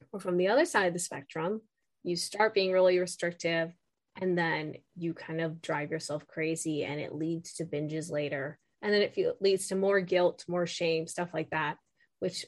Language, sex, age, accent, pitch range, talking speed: English, female, 20-39, American, 175-245 Hz, 195 wpm